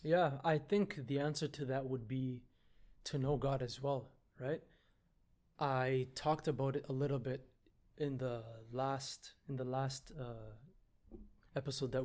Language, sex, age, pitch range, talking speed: English, male, 30-49, 125-145 Hz, 155 wpm